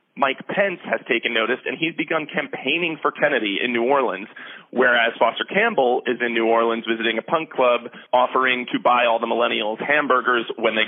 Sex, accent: male, American